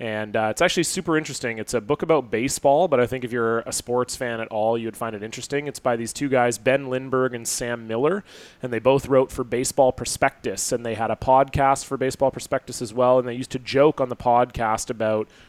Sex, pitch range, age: male, 115-135 Hz, 30-49